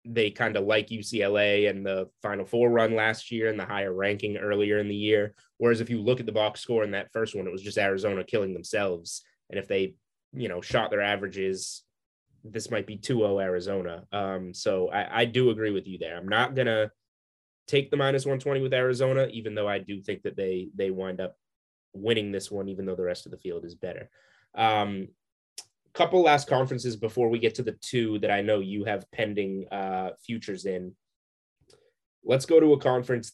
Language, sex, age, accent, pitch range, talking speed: English, male, 20-39, American, 100-120 Hz, 205 wpm